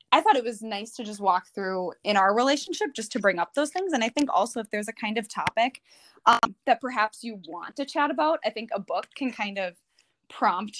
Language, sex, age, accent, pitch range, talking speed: English, female, 10-29, American, 190-255 Hz, 245 wpm